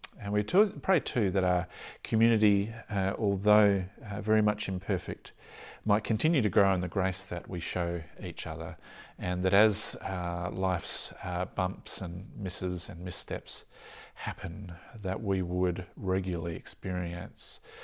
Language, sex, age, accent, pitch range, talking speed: English, male, 40-59, Australian, 90-105 Hz, 140 wpm